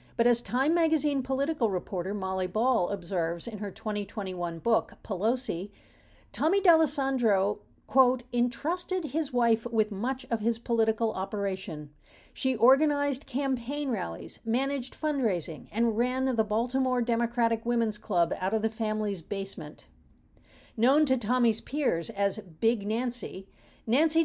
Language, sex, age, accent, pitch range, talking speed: English, female, 50-69, American, 200-260 Hz, 130 wpm